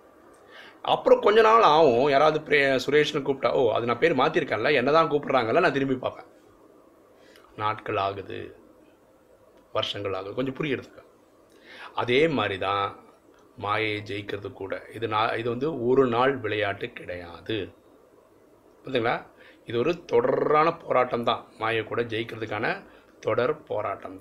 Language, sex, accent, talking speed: Tamil, male, native, 115 wpm